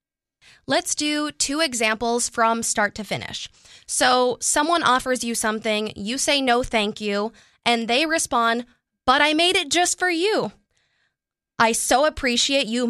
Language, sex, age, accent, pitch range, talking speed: English, female, 20-39, American, 215-280 Hz, 150 wpm